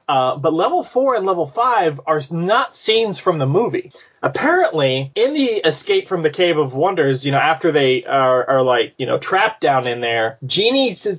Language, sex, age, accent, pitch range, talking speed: English, male, 20-39, American, 130-190 Hz, 195 wpm